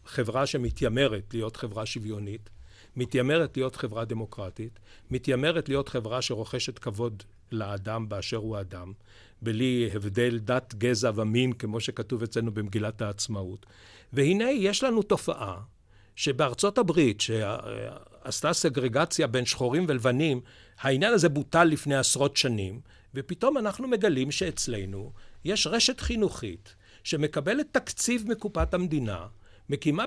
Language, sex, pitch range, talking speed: Hebrew, male, 110-160 Hz, 115 wpm